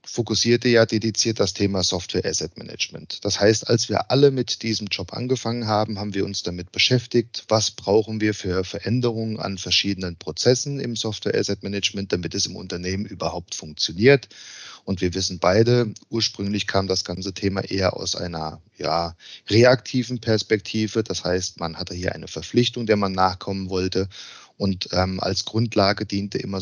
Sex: male